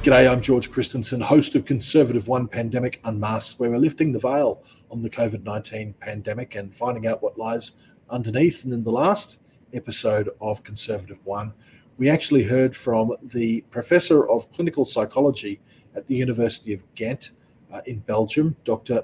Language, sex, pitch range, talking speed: English, male, 115-145 Hz, 160 wpm